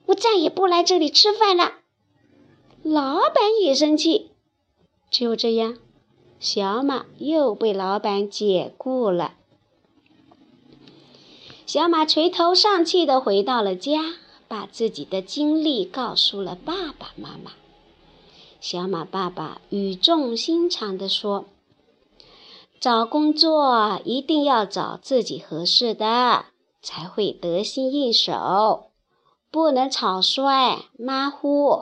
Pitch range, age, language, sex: 210-320 Hz, 50-69, Chinese, male